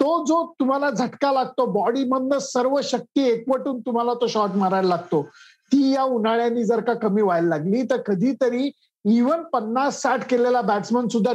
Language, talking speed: Marathi, 160 wpm